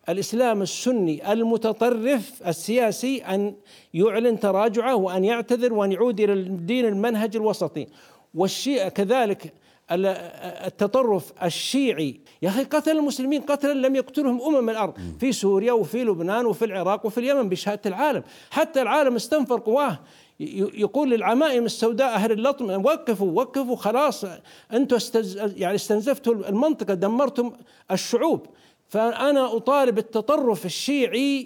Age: 60-79